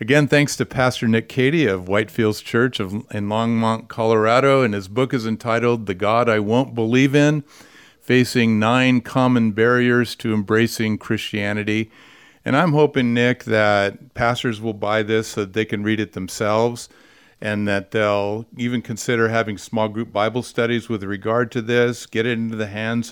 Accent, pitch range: American, 100-120 Hz